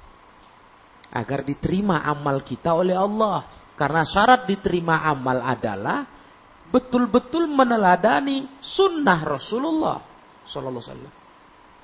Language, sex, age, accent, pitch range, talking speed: Indonesian, male, 40-59, native, 125-190 Hz, 80 wpm